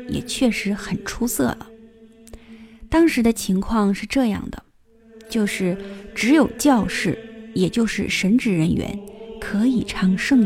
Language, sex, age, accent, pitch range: Chinese, female, 20-39, native, 205-260 Hz